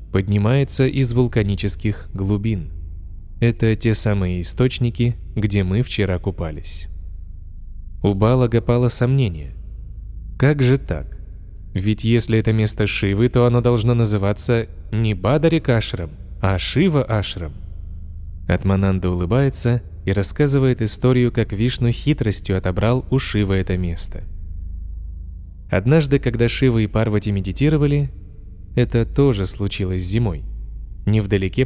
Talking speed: 110 wpm